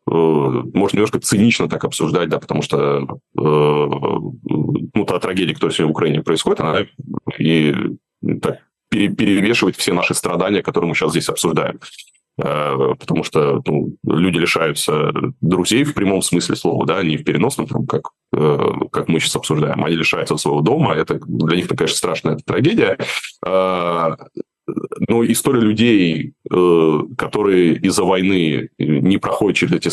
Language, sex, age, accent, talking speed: Russian, male, 30-49, native, 145 wpm